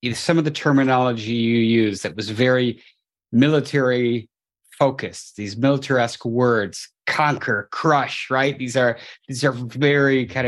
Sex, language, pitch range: male, English, 110-135 Hz